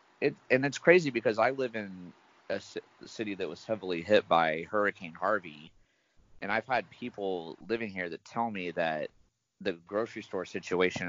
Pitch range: 85-115 Hz